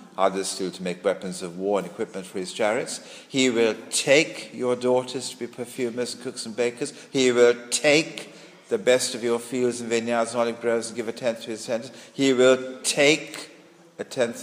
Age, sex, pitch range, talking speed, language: 50-69, male, 115-140 Hz, 205 wpm, English